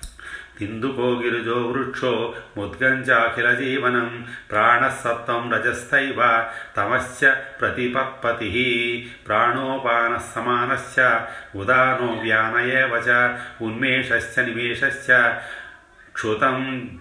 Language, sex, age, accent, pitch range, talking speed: Telugu, male, 40-59, native, 115-130 Hz, 40 wpm